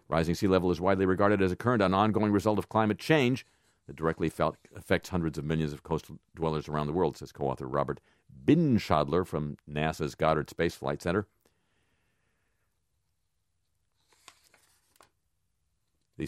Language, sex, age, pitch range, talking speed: English, male, 50-69, 75-100 Hz, 150 wpm